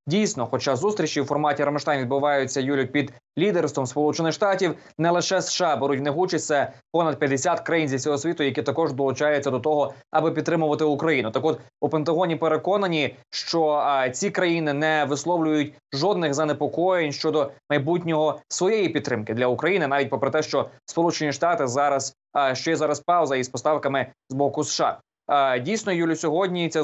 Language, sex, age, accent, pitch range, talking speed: Ukrainian, male, 20-39, native, 140-160 Hz, 165 wpm